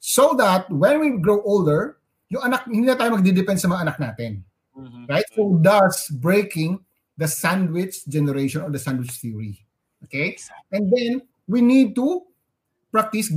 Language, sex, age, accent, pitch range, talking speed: Filipino, male, 30-49, native, 150-225 Hz, 150 wpm